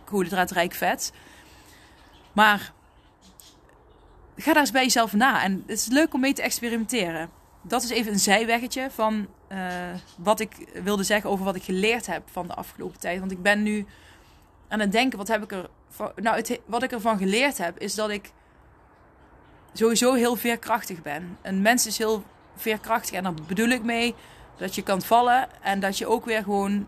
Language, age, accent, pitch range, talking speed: Dutch, 20-39, Dutch, 195-230 Hz, 190 wpm